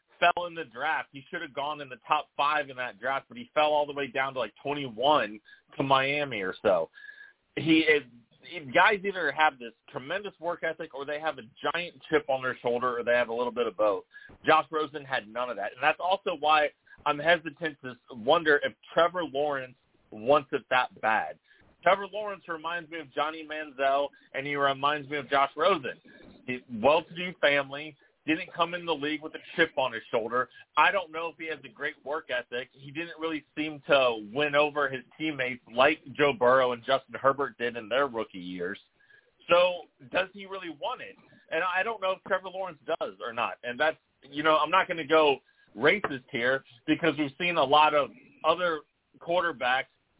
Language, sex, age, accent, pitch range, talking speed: English, male, 30-49, American, 135-175 Hz, 200 wpm